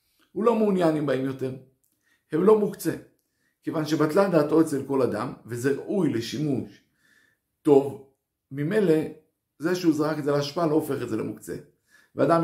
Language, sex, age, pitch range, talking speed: Hebrew, male, 50-69, 125-180 Hz, 155 wpm